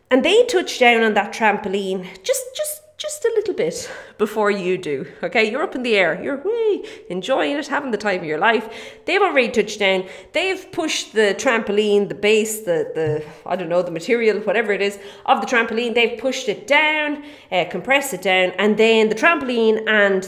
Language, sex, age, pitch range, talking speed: English, female, 30-49, 190-260 Hz, 200 wpm